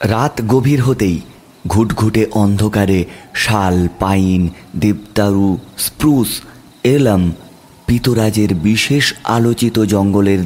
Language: Bengali